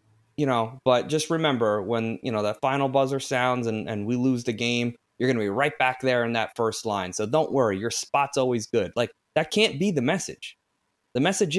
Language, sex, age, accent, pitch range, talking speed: English, male, 20-39, American, 115-145 Hz, 225 wpm